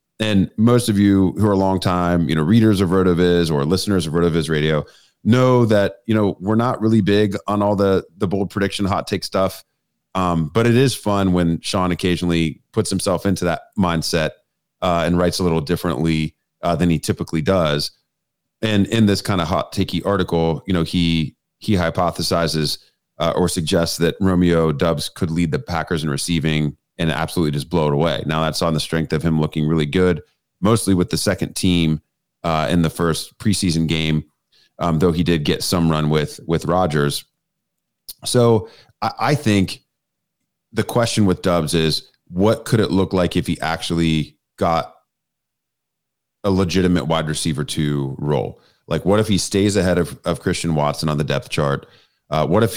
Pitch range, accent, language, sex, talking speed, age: 80-100 Hz, American, English, male, 185 wpm, 30-49